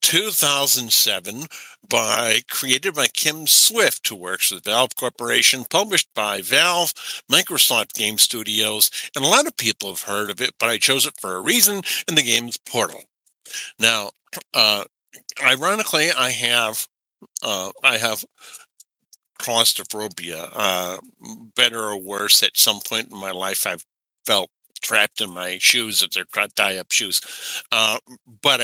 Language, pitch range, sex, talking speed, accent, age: English, 105-130 Hz, male, 140 wpm, American, 60-79